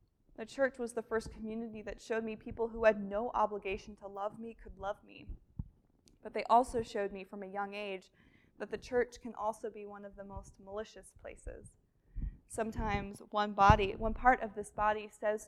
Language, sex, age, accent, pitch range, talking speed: English, female, 20-39, American, 200-225 Hz, 195 wpm